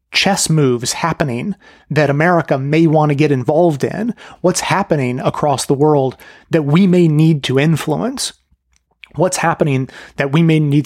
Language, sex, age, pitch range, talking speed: English, male, 30-49, 130-160 Hz, 155 wpm